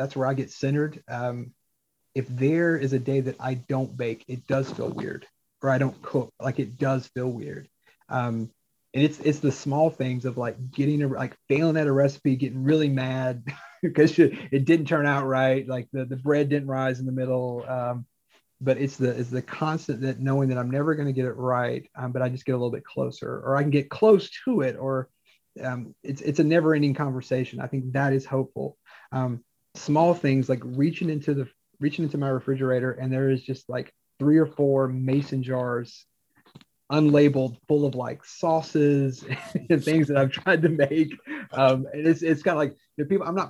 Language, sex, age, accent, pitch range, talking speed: English, male, 30-49, American, 130-150 Hz, 210 wpm